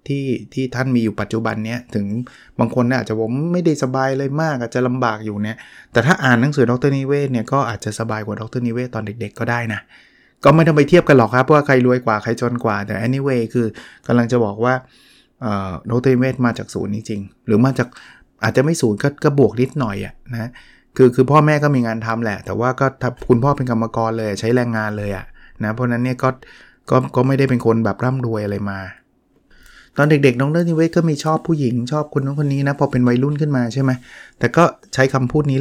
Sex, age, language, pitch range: male, 20-39, Thai, 110-140 Hz